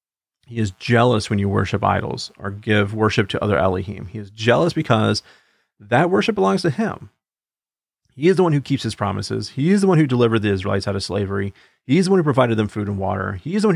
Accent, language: American, English